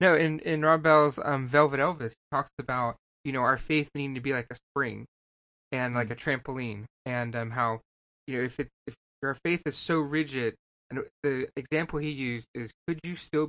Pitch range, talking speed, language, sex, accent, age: 115-140 Hz, 210 wpm, English, male, American, 20-39